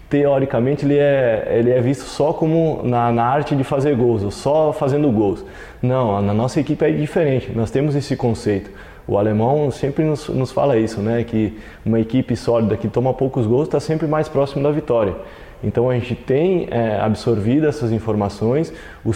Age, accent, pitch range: 20-39, Brazilian, 110-135 Hz